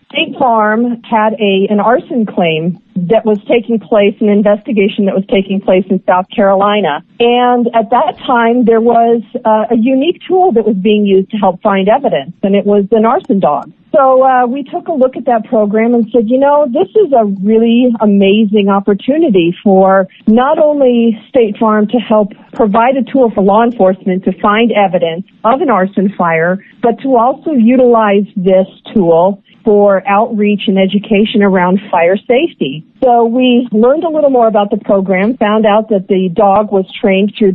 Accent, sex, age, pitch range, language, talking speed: American, female, 50-69, 200-240 Hz, English, 180 wpm